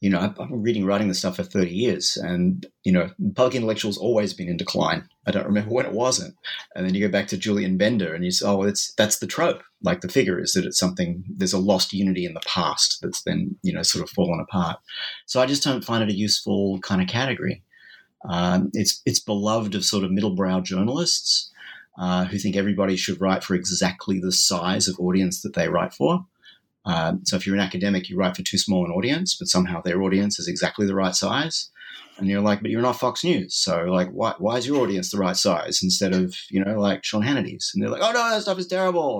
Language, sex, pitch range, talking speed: English, male, 95-140 Hz, 240 wpm